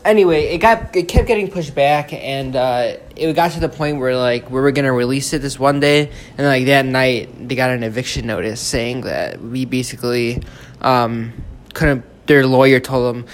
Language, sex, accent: English, male, American